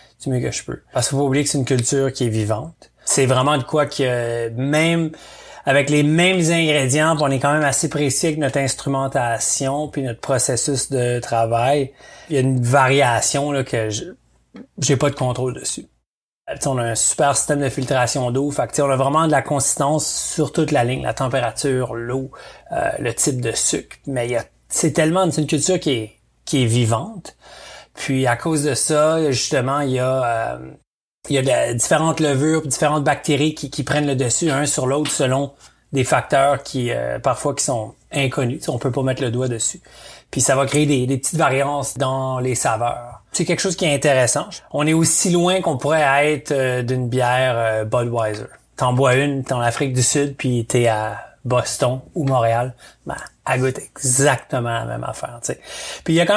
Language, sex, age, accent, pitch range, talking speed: French, male, 30-49, Canadian, 125-150 Hz, 205 wpm